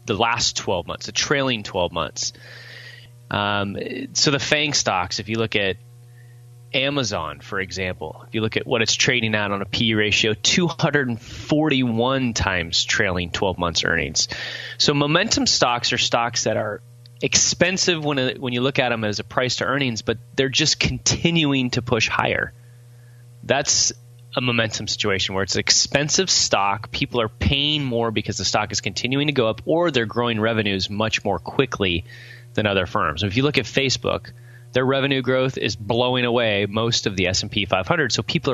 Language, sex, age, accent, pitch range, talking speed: English, male, 20-39, American, 105-130 Hz, 175 wpm